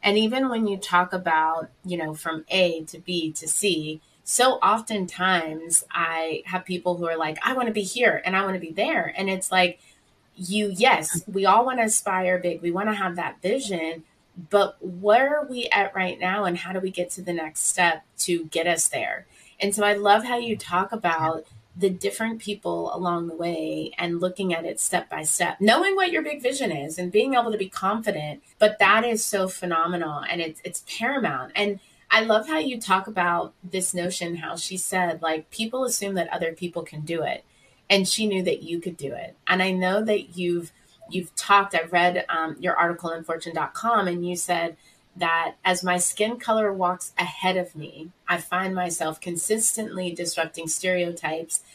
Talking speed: 200 wpm